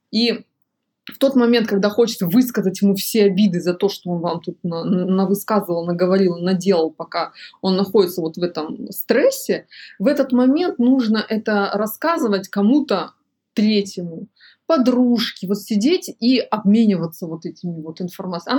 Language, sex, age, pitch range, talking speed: Russian, female, 20-39, 185-235 Hz, 140 wpm